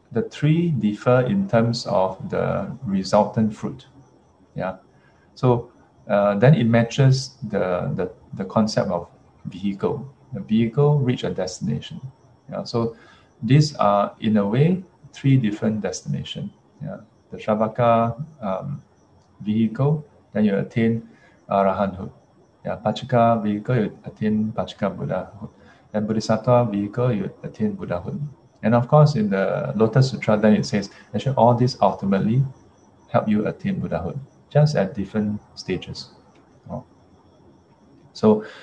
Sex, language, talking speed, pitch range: male, English, 125 wpm, 110-135 Hz